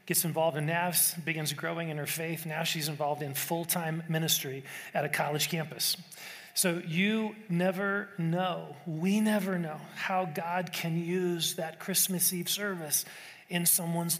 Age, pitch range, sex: 40-59, 160-185 Hz, male